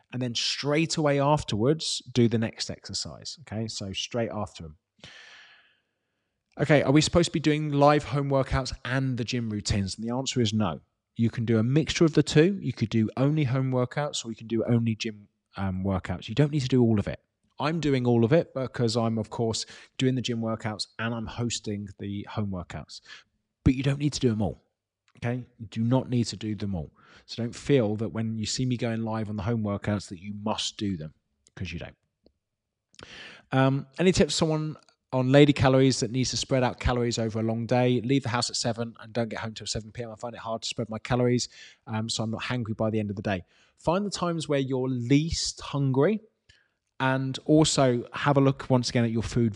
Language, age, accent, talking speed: English, 30-49, British, 225 wpm